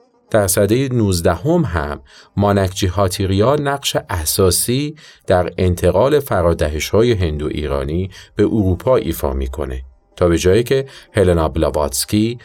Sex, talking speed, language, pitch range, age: male, 115 wpm, Arabic, 80-110 Hz, 50-69